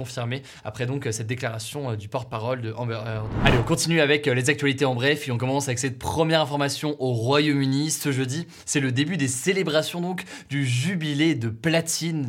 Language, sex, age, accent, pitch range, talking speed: French, male, 20-39, French, 125-155 Hz, 205 wpm